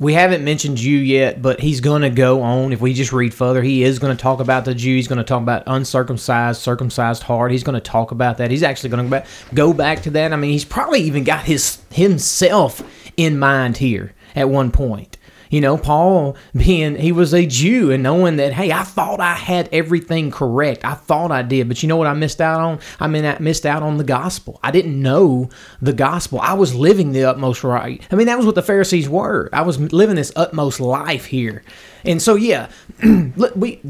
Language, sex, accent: English, male, American